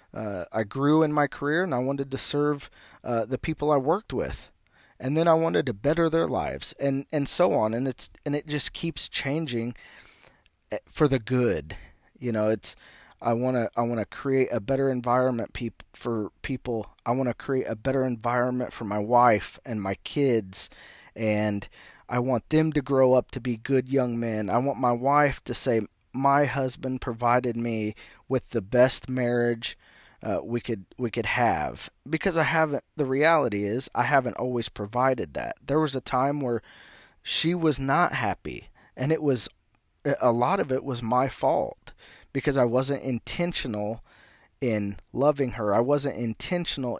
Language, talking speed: English, 180 wpm